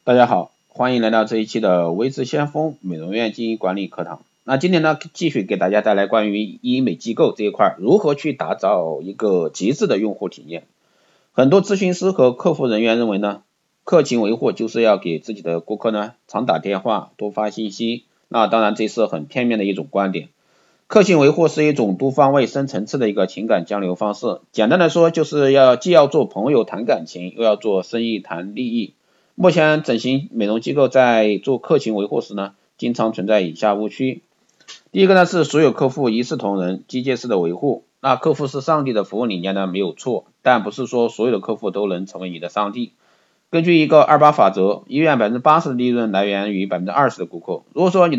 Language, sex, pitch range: Chinese, male, 105-145 Hz